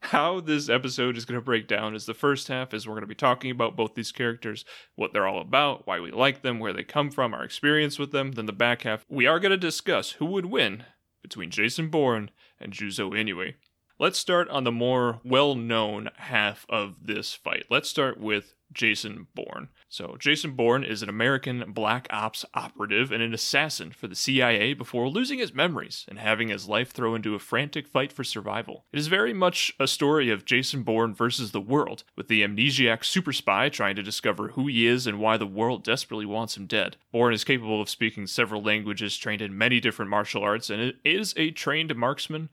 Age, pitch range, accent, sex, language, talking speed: 30-49, 110-140 Hz, American, male, English, 210 wpm